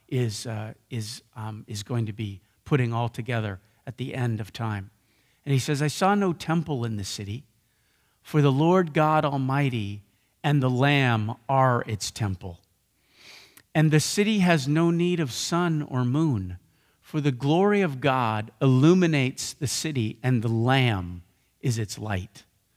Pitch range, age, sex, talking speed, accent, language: 115-165 Hz, 50-69, male, 160 wpm, American, English